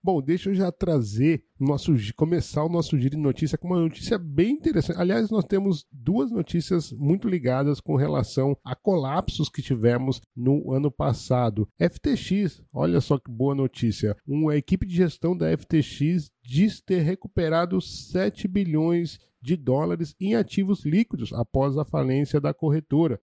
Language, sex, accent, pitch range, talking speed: Portuguese, male, Brazilian, 130-170 Hz, 160 wpm